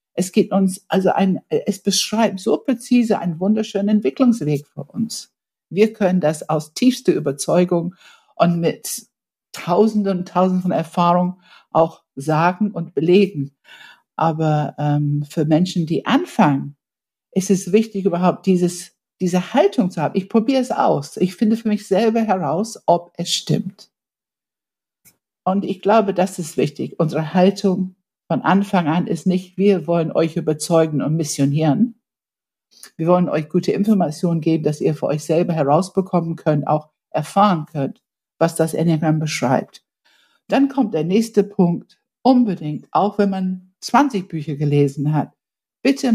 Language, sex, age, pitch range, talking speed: German, female, 60-79, 160-210 Hz, 145 wpm